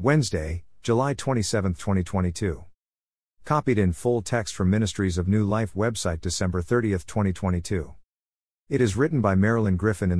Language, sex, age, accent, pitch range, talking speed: English, male, 50-69, American, 90-115 Hz, 140 wpm